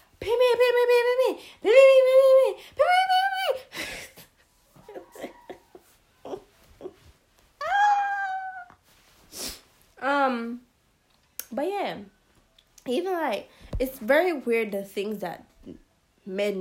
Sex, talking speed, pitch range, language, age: female, 45 wpm, 180-270 Hz, English, 20-39